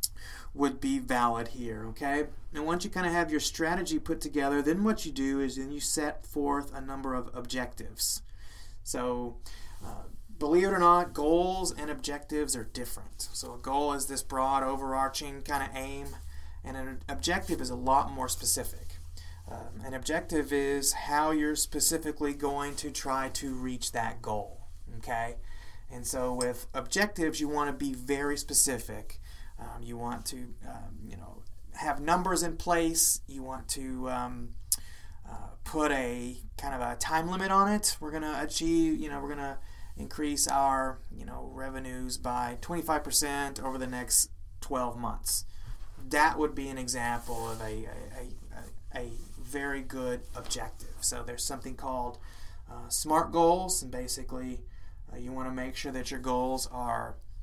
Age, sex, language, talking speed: 30-49, male, English, 165 wpm